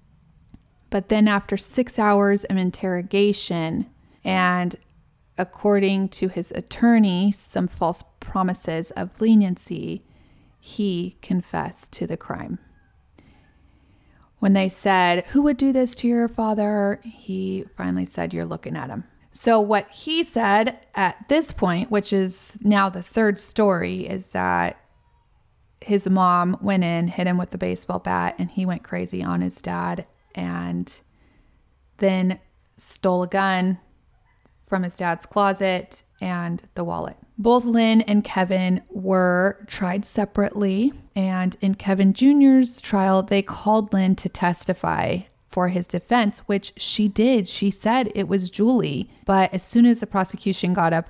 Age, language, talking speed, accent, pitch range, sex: 30-49, English, 140 wpm, American, 175-205 Hz, female